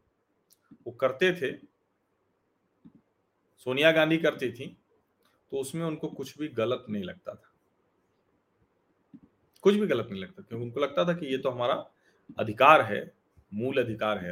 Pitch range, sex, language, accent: 105-120 Hz, male, Hindi, native